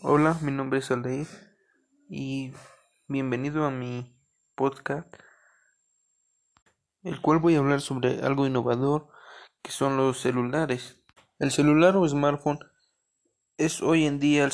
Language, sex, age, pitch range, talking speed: Spanish, male, 20-39, 130-150 Hz, 130 wpm